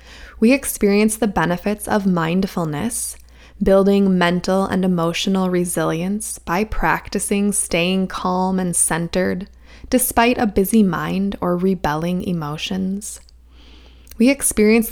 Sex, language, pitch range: female, English, 170-215 Hz